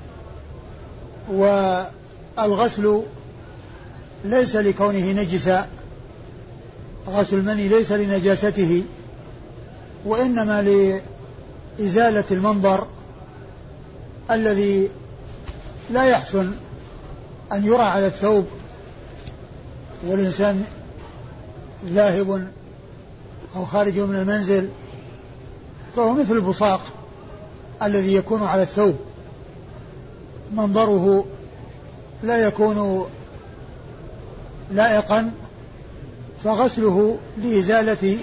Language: Arabic